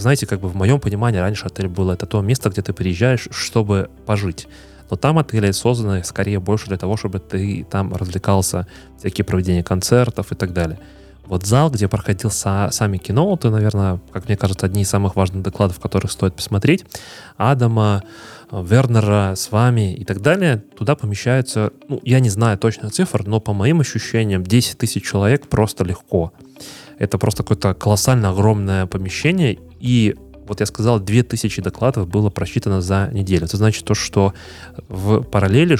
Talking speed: 170 wpm